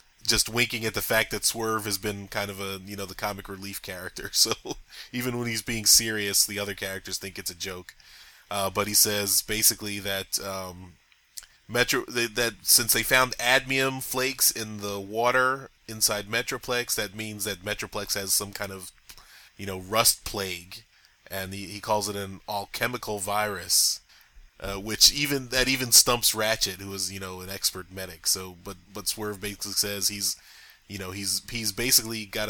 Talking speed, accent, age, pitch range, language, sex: 180 wpm, American, 20-39, 100-115 Hz, English, male